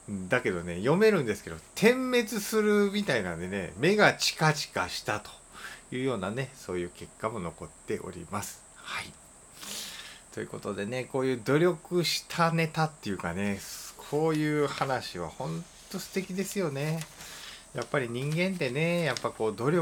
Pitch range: 105-170 Hz